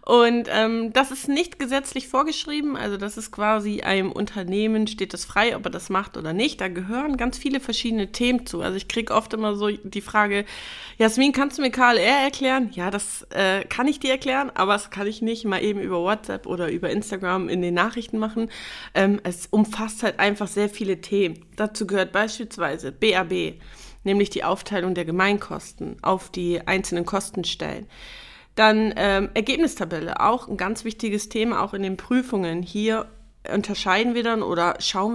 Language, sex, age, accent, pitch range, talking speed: German, female, 20-39, German, 190-230 Hz, 180 wpm